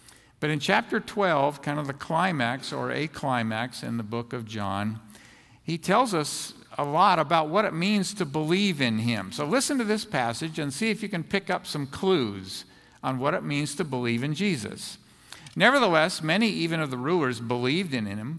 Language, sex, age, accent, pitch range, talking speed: English, male, 50-69, American, 125-180 Hz, 195 wpm